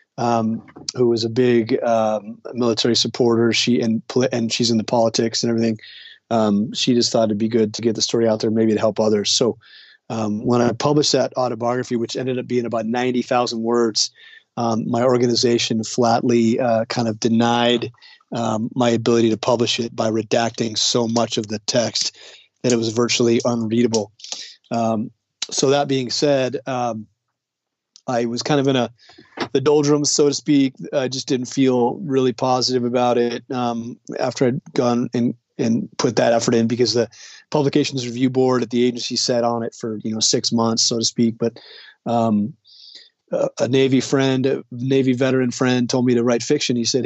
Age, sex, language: 30-49, male, English